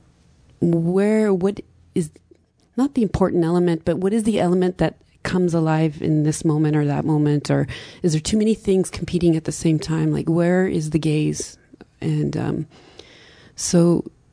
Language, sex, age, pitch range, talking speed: English, female, 30-49, 155-180 Hz, 170 wpm